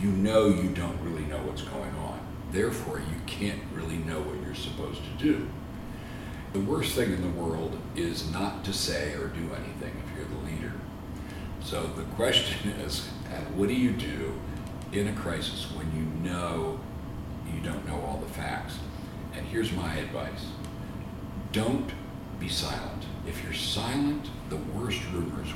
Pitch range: 80-105 Hz